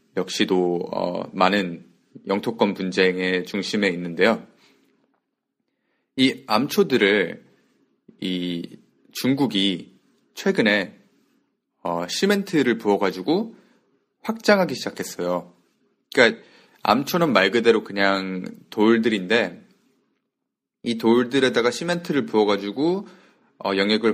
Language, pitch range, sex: Korean, 95-130 Hz, male